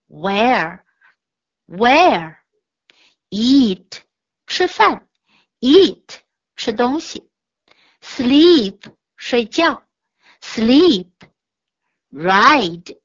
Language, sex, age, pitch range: Chinese, female, 60-79, 205-315 Hz